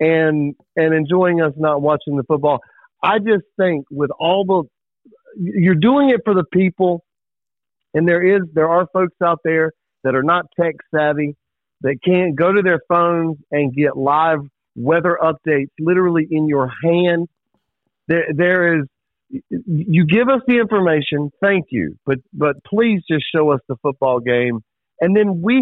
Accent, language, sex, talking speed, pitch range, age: American, English, male, 165 wpm, 145-185 Hz, 50-69